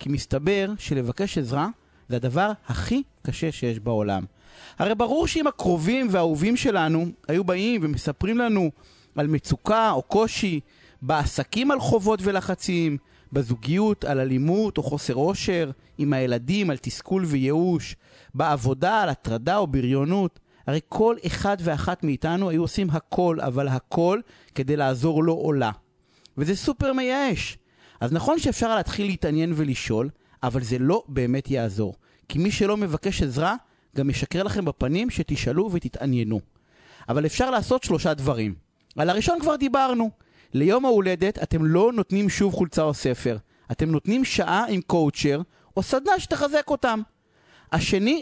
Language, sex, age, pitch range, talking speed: Hebrew, male, 30-49, 140-210 Hz, 140 wpm